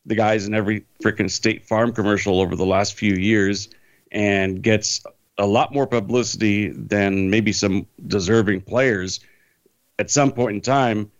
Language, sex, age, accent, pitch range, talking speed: English, male, 50-69, American, 100-125 Hz, 155 wpm